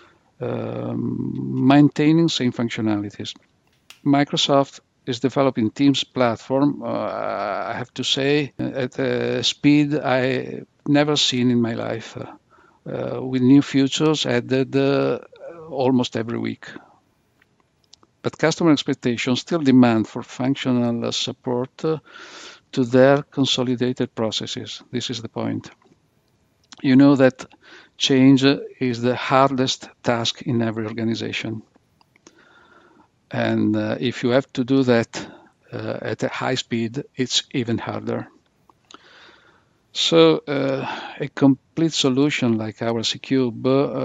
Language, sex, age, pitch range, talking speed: English, male, 50-69, 120-140 Hz, 115 wpm